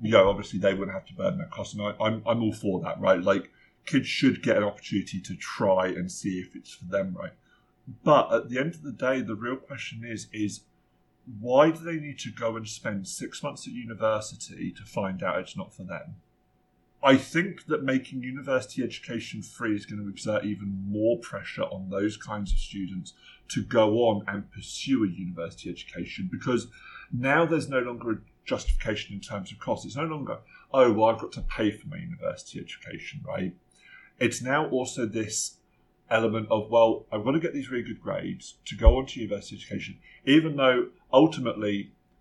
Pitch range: 105-130 Hz